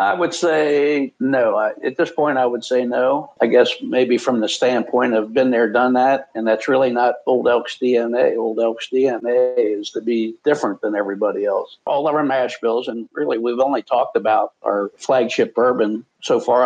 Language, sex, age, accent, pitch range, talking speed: English, male, 60-79, American, 115-150 Hz, 200 wpm